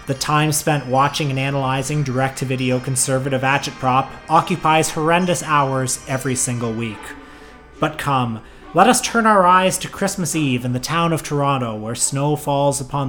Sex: male